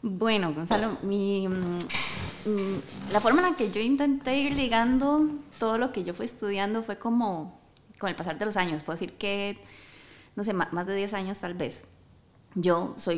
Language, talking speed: Spanish, 180 wpm